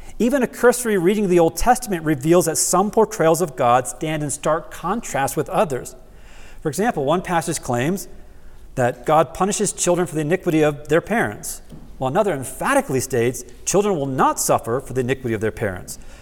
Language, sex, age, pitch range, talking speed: English, male, 40-59, 135-185 Hz, 180 wpm